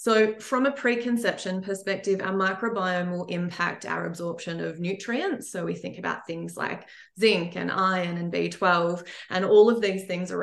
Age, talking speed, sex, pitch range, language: 20-39, 175 wpm, female, 180-205 Hz, English